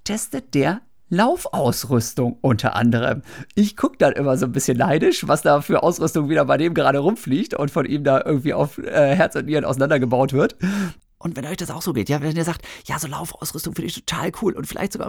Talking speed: 220 wpm